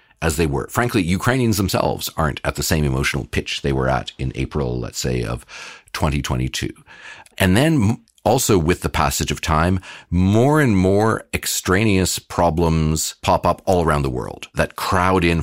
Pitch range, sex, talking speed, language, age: 70-85 Hz, male, 165 wpm, Ukrainian, 40-59